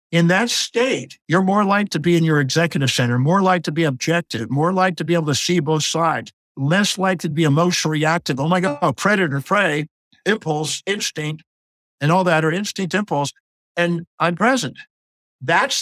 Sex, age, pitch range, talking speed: male, 50-69, 145-205 Hz, 185 wpm